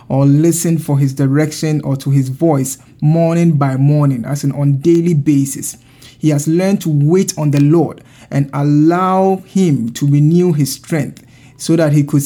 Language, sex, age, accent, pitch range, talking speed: English, male, 50-69, Nigerian, 140-165 Hz, 175 wpm